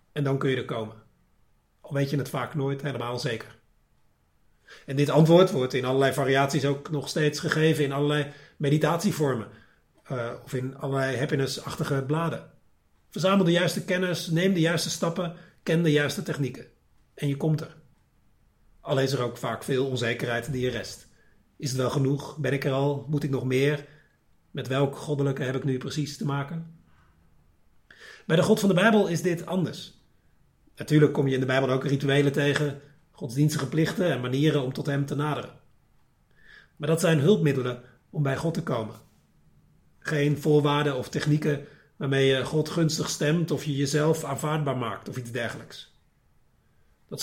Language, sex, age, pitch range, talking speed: Dutch, male, 40-59, 135-160 Hz, 170 wpm